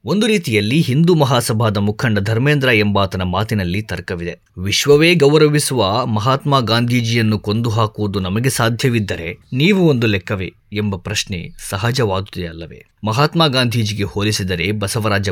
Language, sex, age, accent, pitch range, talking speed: Kannada, male, 20-39, native, 105-135 Hz, 105 wpm